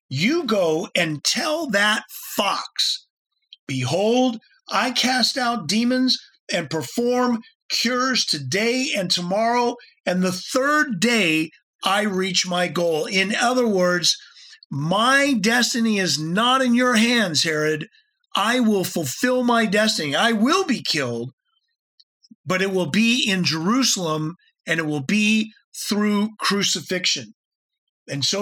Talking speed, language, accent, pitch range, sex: 125 wpm, English, American, 175-250 Hz, male